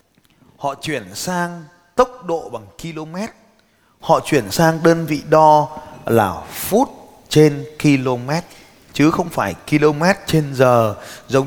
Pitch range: 115-160 Hz